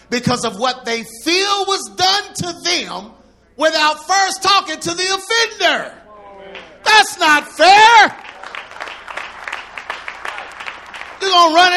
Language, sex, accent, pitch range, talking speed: English, male, American, 275-350 Hz, 105 wpm